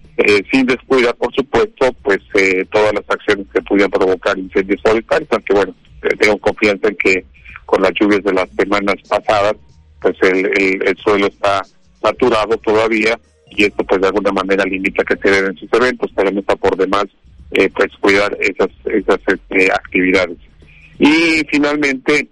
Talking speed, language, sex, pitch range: 165 wpm, Spanish, male, 95-120 Hz